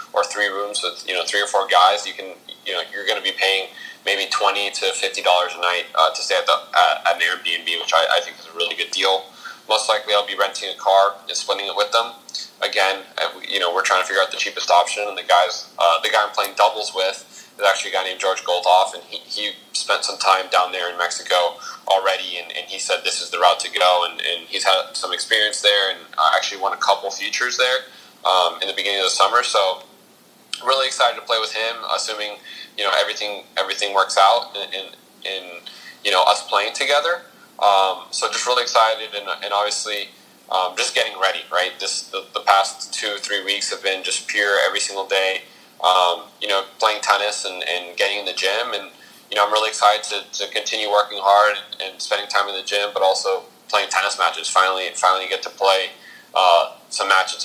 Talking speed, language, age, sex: 225 wpm, English, 20-39, male